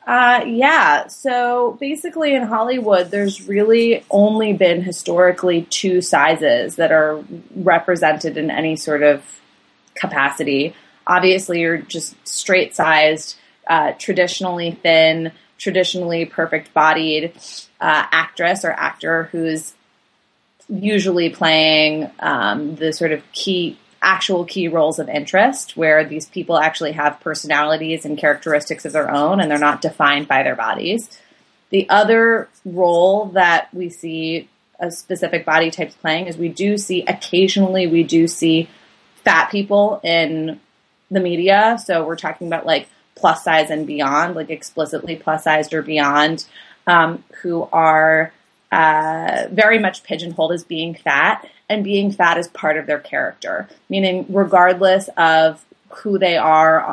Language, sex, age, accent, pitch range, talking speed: English, female, 20-39, American, 160-195 Hz, 135 wpm